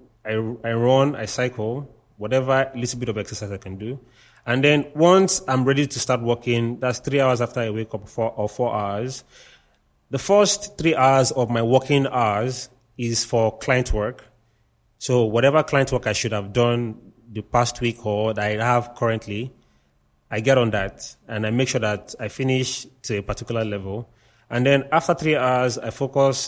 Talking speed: 185 wpm